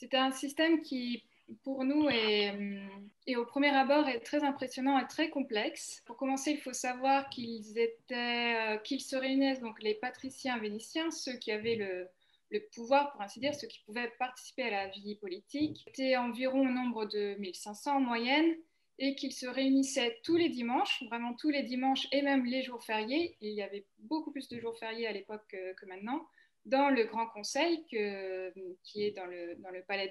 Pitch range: 215-275 Hz